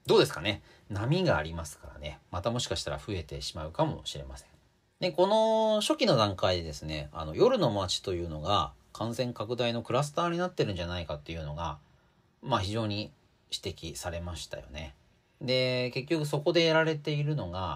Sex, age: male, 40-59